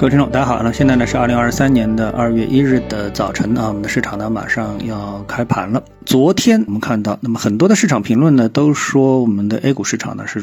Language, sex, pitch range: Chinese, male, 110-145 Hz